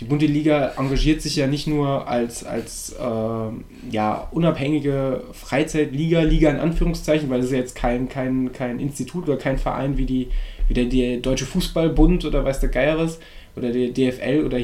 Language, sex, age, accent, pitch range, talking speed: German, male, 10-29, German, 125-155 Hz, 170 wpm